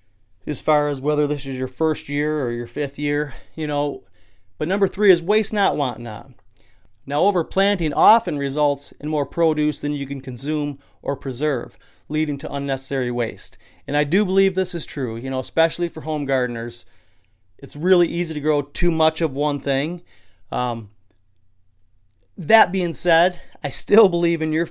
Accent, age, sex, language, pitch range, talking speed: American, 30-49, male, English, 115-160 Hz, 175 wpm